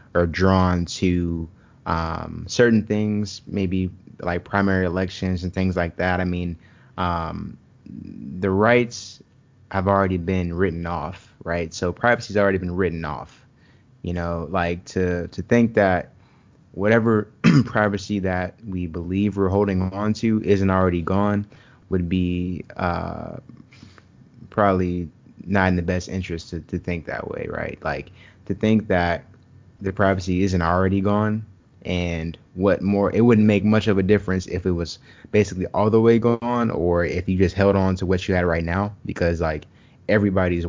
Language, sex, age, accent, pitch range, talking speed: English, male, 20-39, American, 90-105 Hz, 160 wpm